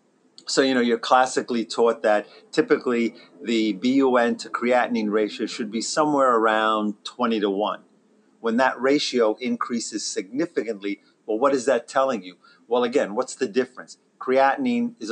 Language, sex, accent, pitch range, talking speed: English, male, American, 105-125 Hz, 150 wpm